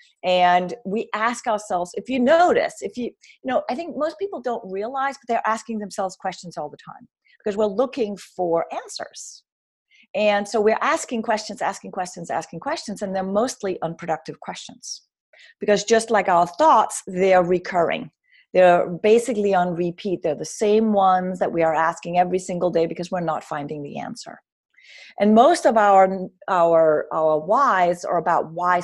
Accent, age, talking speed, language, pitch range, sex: American, 40-59, 175 wpm, English, 170-225 Hz, female